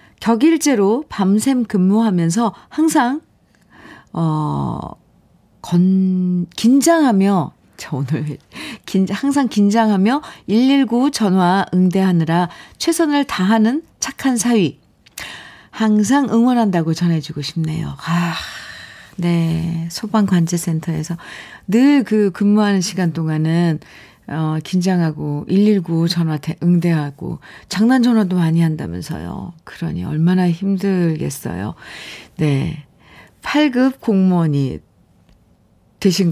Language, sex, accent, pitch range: Korean, female, native, 170-260 Hz